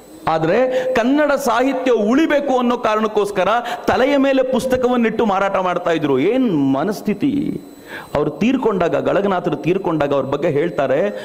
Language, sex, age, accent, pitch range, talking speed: Kannada, male, 40-59, native, 140-230 Hz, 110 wpm